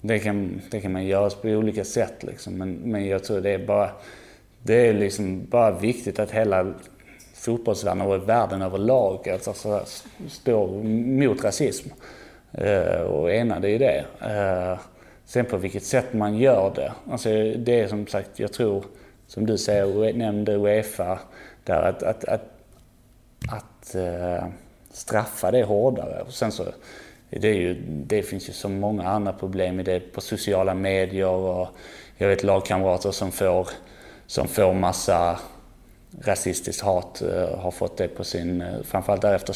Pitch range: 95-105 Hz